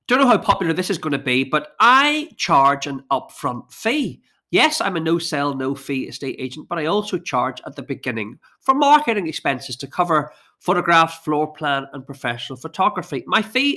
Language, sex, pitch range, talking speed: English, male, 135-195 Hz, 185 wpm